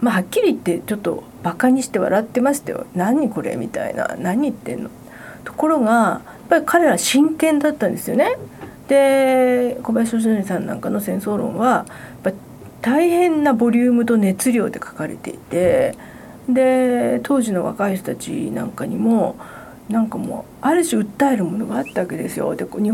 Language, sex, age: Japanese, female, 40-59